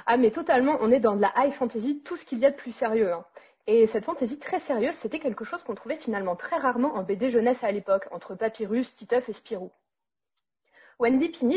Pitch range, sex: 210-275 Hz, female